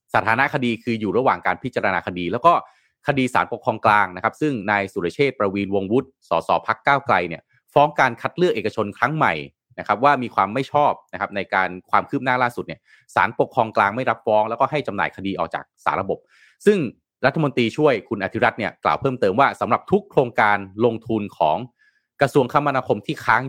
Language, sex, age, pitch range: Thai, male, 30-49, 105-140 Hz